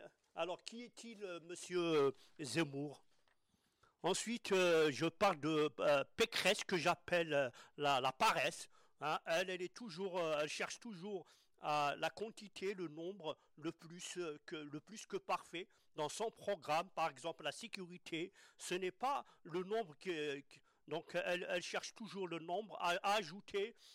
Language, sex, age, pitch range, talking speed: French, male, 50-69, 165-210 Hz, 160 wpm